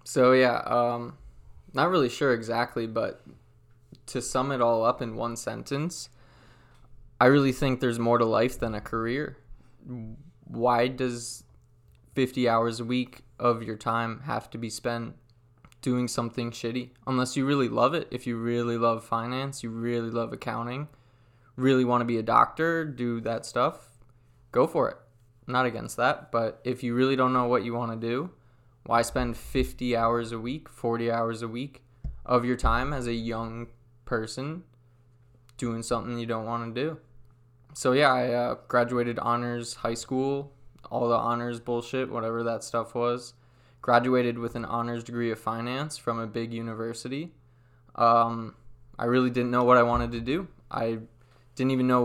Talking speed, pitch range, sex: 170 wpm, 115-125 Hz, male